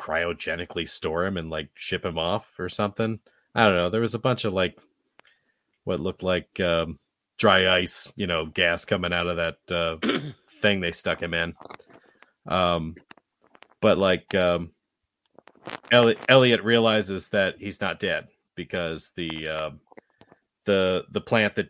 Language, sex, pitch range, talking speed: English, male, 80-100 Hz, 150 wpm